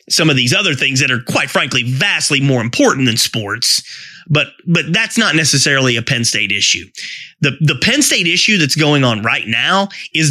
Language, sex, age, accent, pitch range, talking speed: English, male, 30-49, American, 140-190 Hz, 200 wpm